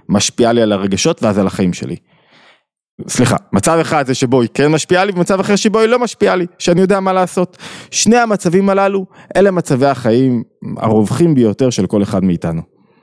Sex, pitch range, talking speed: male, 110-170 Hz, 185 wpm